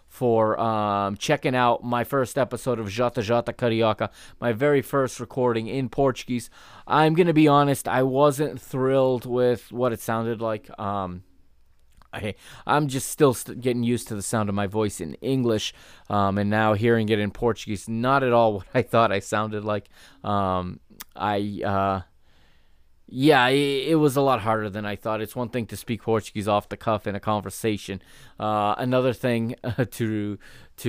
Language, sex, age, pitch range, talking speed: English, male, 20-39, 100-120 Hz, 175 wpm